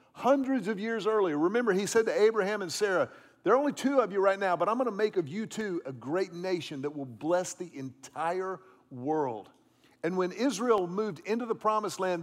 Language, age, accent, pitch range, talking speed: English, 50-69, American, 170-235 Hz, 215 wpm